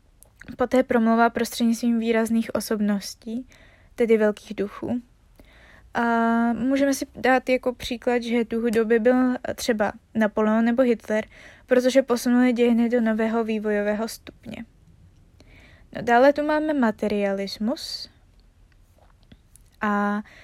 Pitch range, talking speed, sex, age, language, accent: 220-255 Hz, 105 wpm, female, 20-39, Czech, native